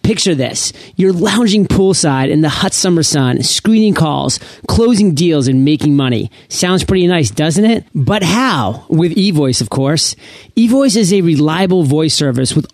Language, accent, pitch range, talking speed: English, American, 155-205 Hz, 165 wpm